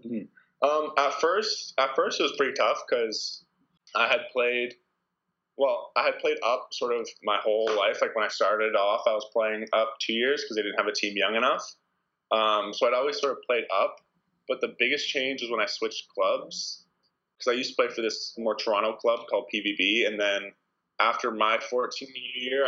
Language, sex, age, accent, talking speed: English, male, 20-39, American, 205 wpm